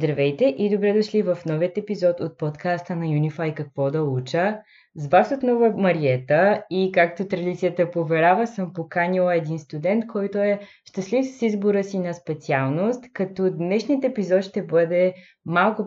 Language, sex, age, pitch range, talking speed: Bulgarian, female, 20-39, 145-185 Hz, 150 wpm